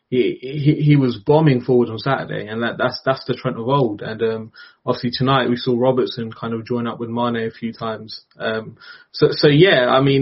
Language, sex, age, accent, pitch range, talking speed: English, male, 20-39, British, 120-135 Hz, 225 wpm